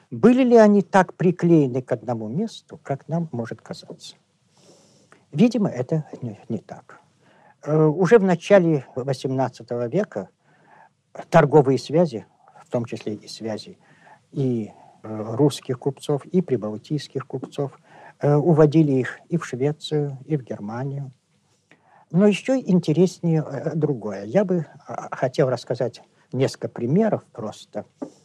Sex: male